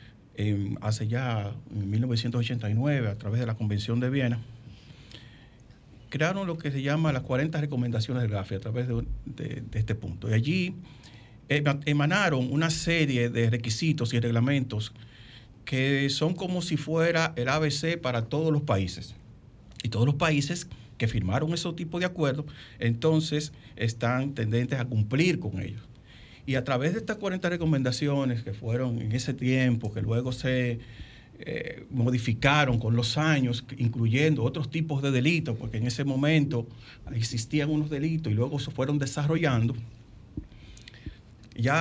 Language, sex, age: Spanish, male, 50-69